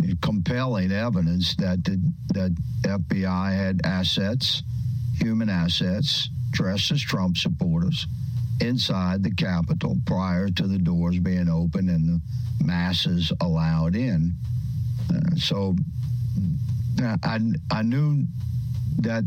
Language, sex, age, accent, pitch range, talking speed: English, male, 60-79, American, 90-120 Hz, 105 wpm